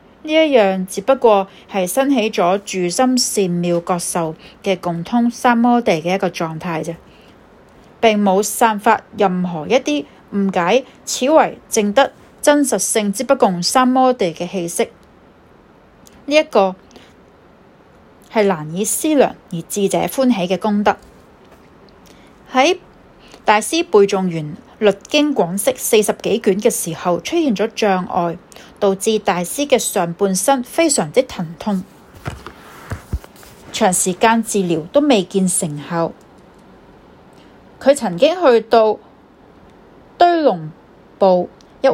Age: 30-49